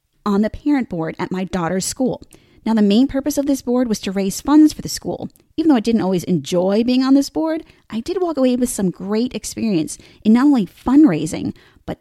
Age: 20-39